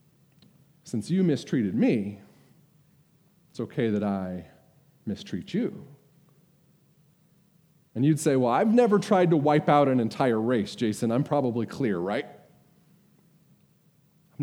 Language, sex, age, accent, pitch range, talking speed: English, male, 40-59, American, 130-175 Hz, 120 wpm